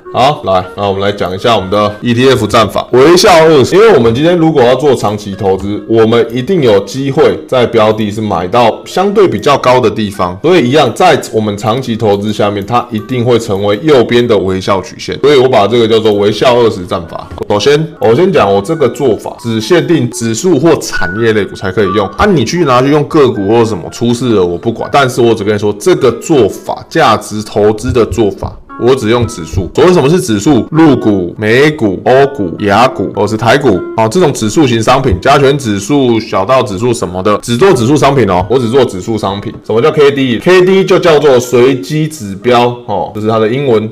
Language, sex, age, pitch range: Chinese, male, 20-39, 105-130 Hz